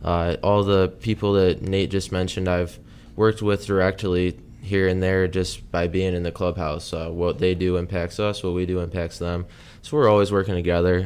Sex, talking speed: male, 200 wpm